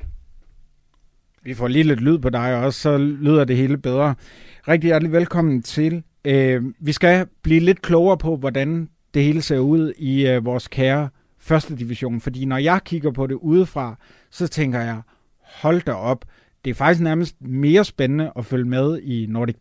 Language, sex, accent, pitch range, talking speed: Danish, male, native, 125-160 Hz, 175 wpm